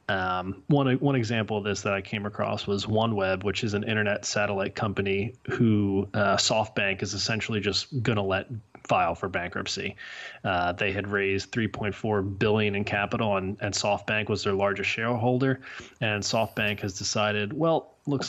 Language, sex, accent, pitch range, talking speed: English, male, American, 100-110 Hz, 165 wpm